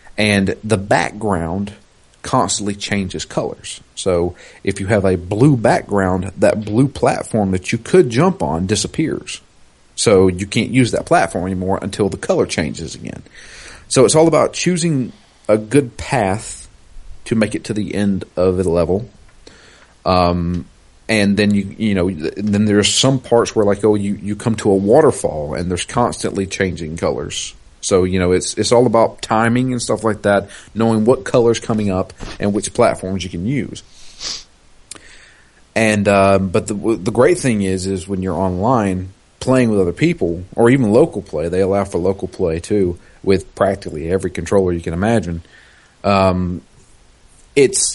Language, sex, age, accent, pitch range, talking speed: English, male, 40-59, American, 95-115 Hz, 165 wpm